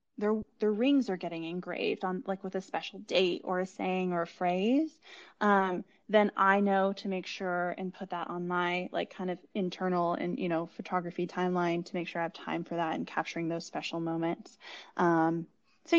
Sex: female